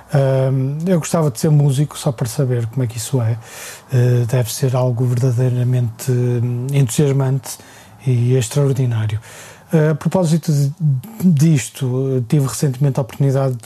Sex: male